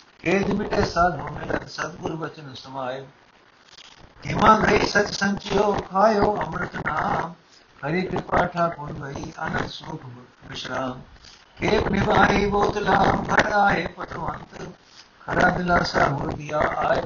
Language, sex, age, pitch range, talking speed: Punjabi, male, 60-79, 140-200 Hz, 115 wpm